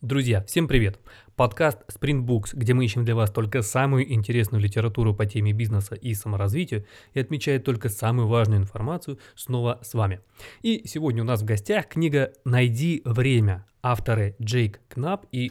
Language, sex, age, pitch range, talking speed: Russian, male, 20-39, 110-135 Hz, 160 wpm